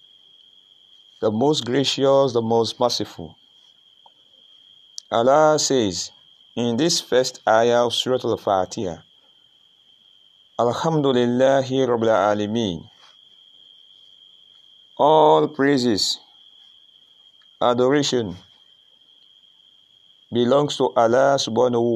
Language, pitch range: English, 110-135 Hz